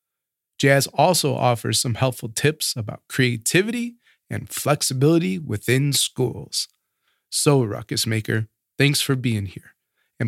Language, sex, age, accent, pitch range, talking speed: English, male, 30-49, American, 130-180 Hz, 115 wpm